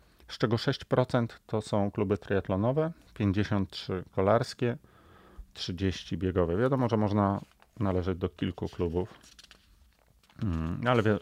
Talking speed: 100 wpm